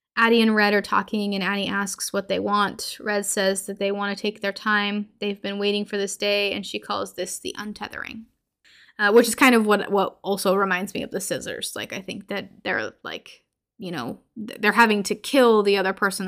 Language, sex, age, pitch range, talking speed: English, female, 10-29, 195-225 Hz, 220 wpm